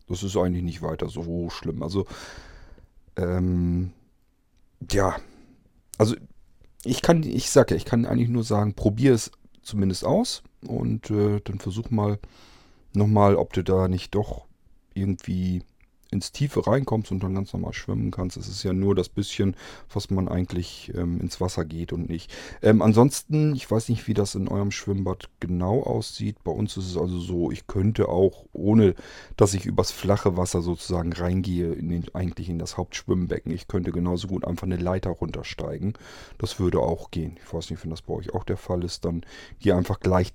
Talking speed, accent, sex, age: 180 wpm, German, male, 40-59